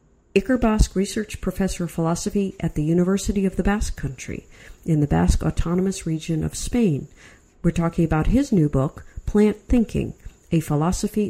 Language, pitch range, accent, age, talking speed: English, 155-205 Hz, American, 50-69, 160 wpm